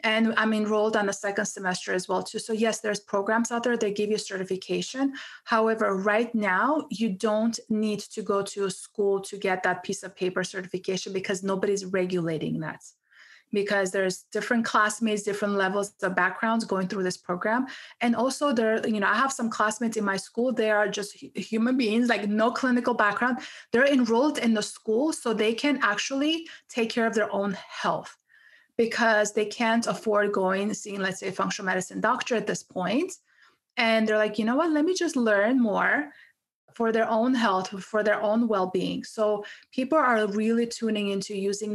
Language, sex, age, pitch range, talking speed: English, female, 30-49, 195-230 Hz, 190 wpm